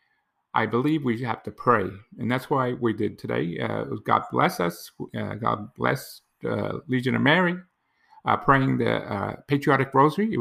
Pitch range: 110-145 Hz